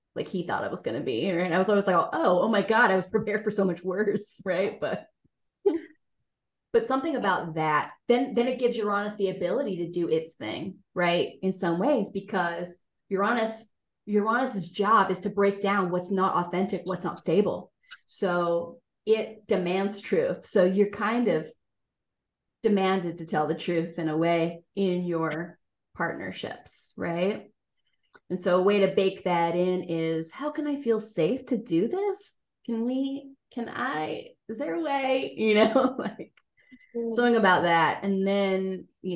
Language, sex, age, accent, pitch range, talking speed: English, female, 30-49, American, 175-225 Hz, 175 wpm